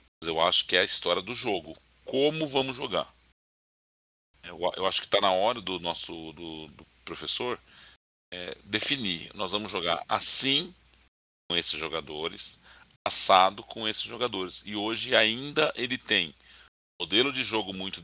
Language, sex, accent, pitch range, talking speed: Portuguese, male, Brazilian, 80-115 Hz, 150 wpm